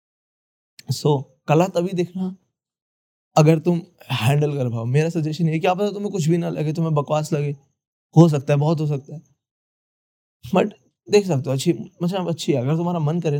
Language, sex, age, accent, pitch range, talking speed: Hindi, male, 20-39, native, 130-165 Hz, 190 wpm